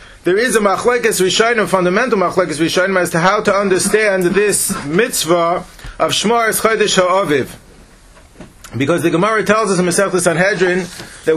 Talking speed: 150 wpm